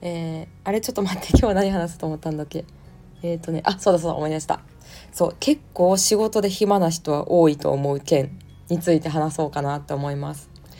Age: 20-39